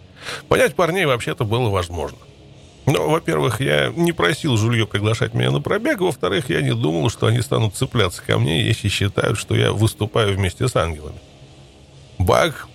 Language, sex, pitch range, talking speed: Russian, male, 100-120 Hz, 160 wpm